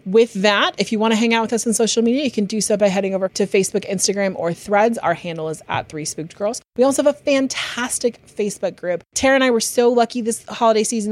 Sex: female